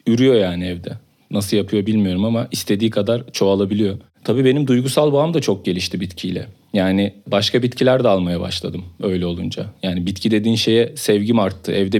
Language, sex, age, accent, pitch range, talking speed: Turkish, male, 40-59, native, 100-125 Hz, 165 wpm